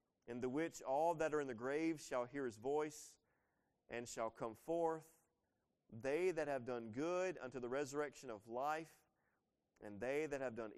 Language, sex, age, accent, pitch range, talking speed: English, male, 40-59, American, 115-155 Hz, 180 wpm